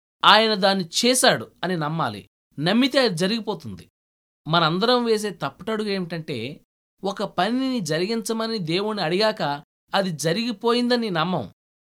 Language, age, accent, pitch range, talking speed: Telugu, 20-39, native, 135-215 Hz, 100 wpm